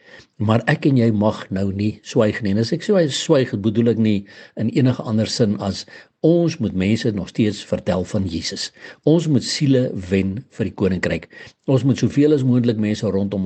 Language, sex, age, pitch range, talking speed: English, male, 60-79, 100-130 Hz, 195 wpm